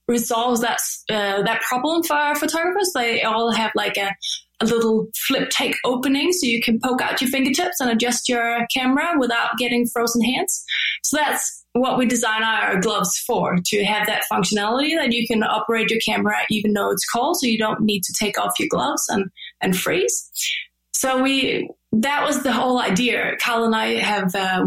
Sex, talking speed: female, 190 wpm